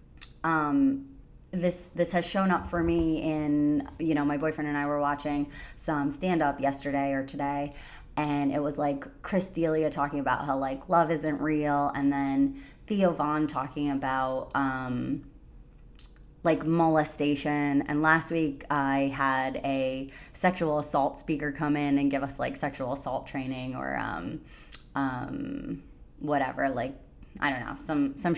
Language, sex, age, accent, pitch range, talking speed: English, female, 20-39, American, 135-160 Hz, 150 wpm